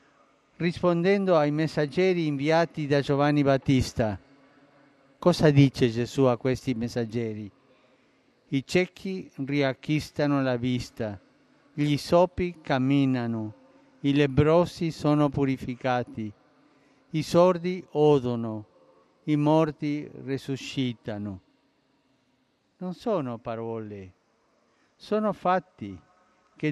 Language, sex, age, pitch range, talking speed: Italian, male, 50-69, 135-180 Hz, 85 wpm